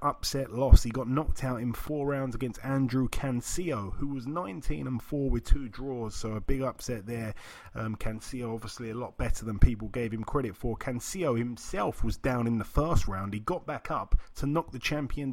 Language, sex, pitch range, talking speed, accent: English, male, 115-140 Hz, 205 wpm, British